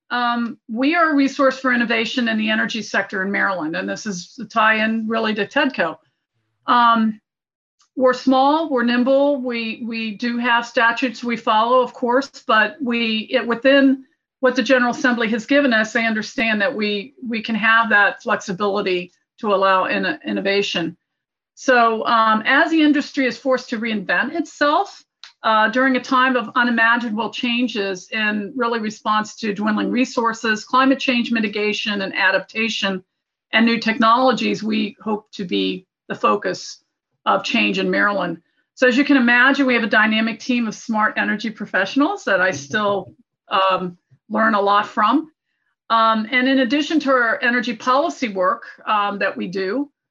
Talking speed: 165 wpm